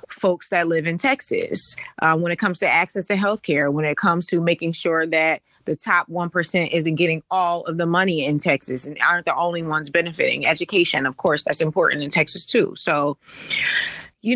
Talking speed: 200 wpm